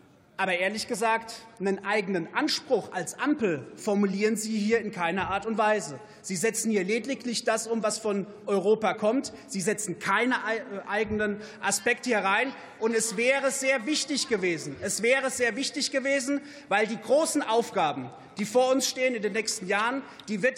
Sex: male